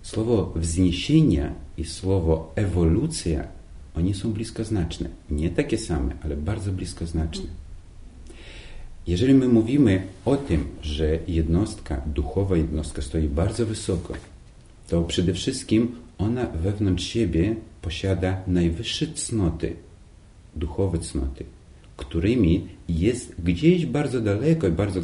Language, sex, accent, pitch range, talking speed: Polish, male, native, 80-105 Hz, 105 wpm